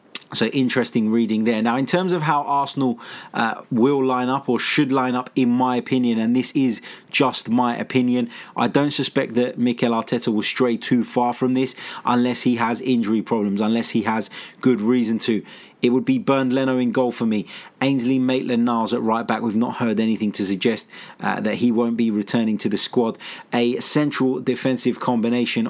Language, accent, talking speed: English, British, 195 wpm